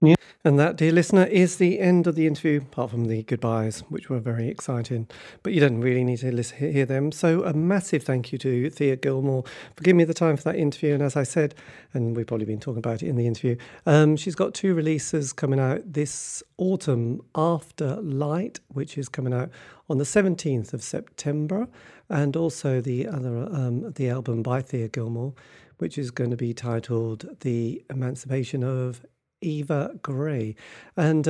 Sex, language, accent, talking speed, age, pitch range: male, English, British, 190 wpm, 40-59, 125-160 Hz